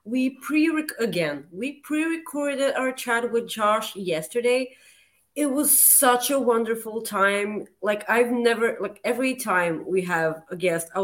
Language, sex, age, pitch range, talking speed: English, female, 30-49, 200-260 Hz, 145 wpm